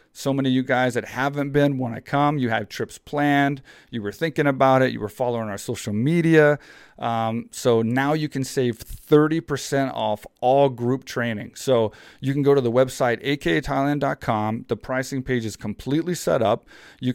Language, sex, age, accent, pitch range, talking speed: English, male, 40-59, American, 115-140 Hz, 185 wpm